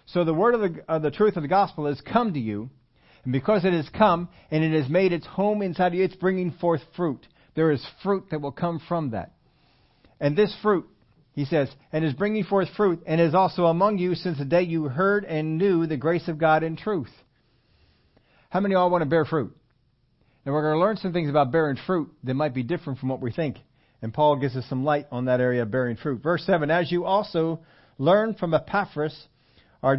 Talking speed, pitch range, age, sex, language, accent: 230 wpm, 135-180 Hz, 50-69, male, English, American